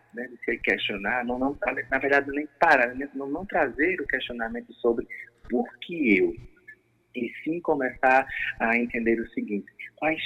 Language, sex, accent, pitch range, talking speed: Portuguese, male, Brazilian, 110-140 Hz, 150 wpm